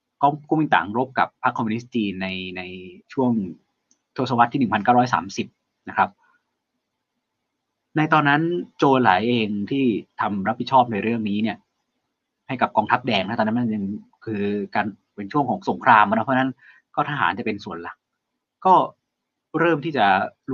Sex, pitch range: male, 105-140 Hz